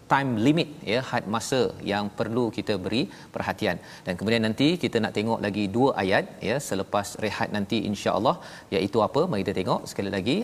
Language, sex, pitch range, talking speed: Malayalam, male, 105-130 Hz, 180 wpm